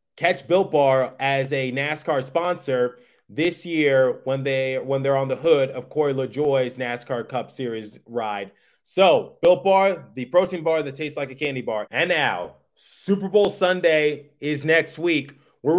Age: 20-39